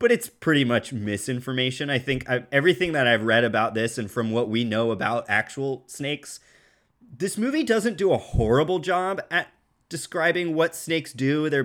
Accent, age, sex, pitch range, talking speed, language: American, 30-49, male, 115-150 Hz, 180 wpm, English